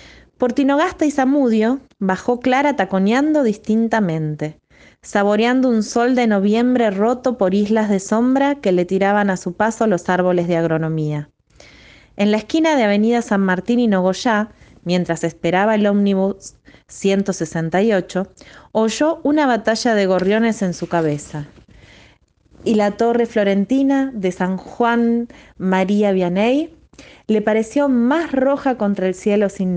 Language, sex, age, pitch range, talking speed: Spanish, female, 20-39, 185-245 Hz, 135 wpm